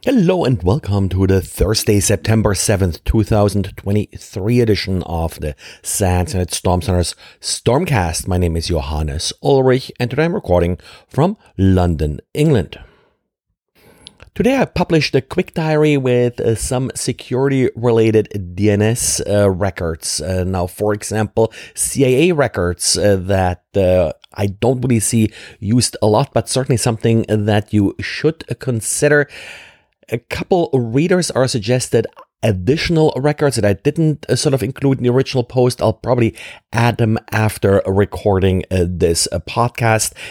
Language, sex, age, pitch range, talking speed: English, male, 30-49, 95-125 Hz, 140 wpm